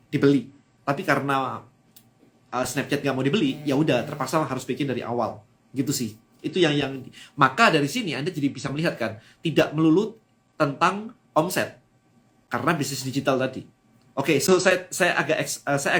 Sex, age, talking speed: male, 20-39, 160 wpm